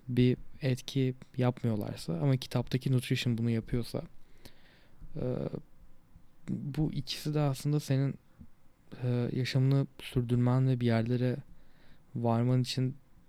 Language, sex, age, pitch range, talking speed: Turkish, male, 20-39, 125-145 Hz, 90 wpm